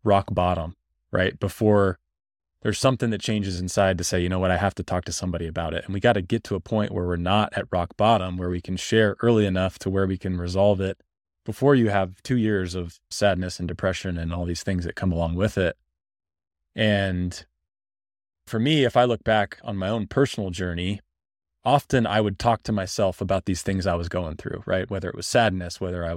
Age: 20-39